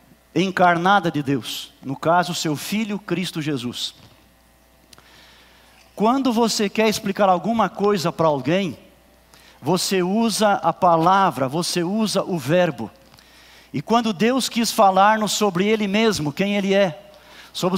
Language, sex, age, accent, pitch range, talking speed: Portuguese, male, 50-69, Brazilian, 165-210 Hz, 125 wpm